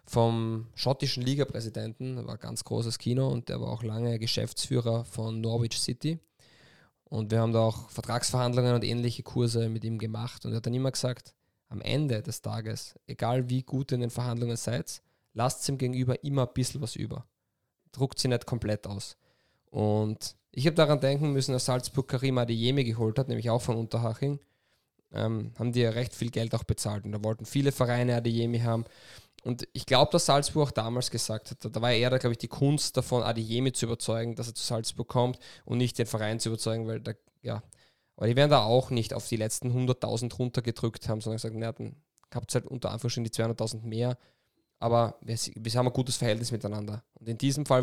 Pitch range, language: 115-130 Hz, German